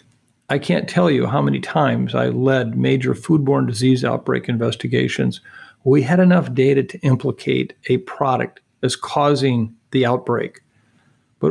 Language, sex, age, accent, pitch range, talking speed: English, male, 50-69, American, 120-145 Hz, 140 wpm